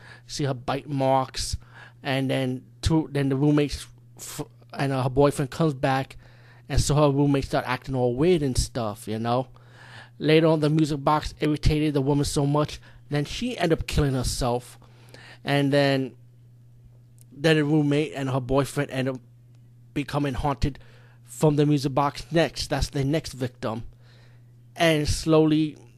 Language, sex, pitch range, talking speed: English, male, 120-150 Hz, 155 wpm